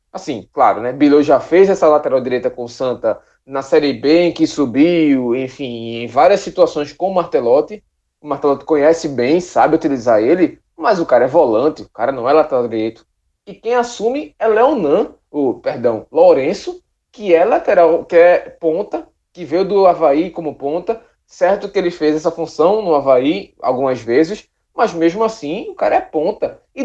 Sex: male